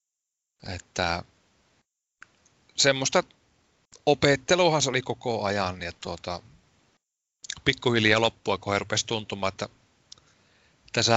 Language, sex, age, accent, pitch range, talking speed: Finnish, male, 30-49, native, 100-125 Hz, 85 wpm